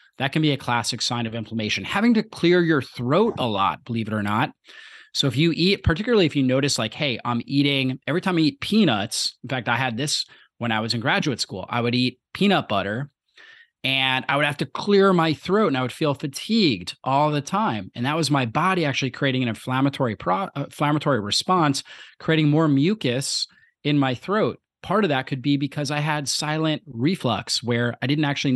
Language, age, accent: English, 30-49, American